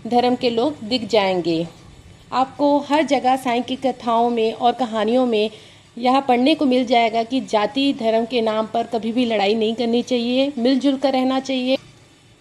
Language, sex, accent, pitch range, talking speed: Hindi, female, native, 220-260 Hz, 175 wpm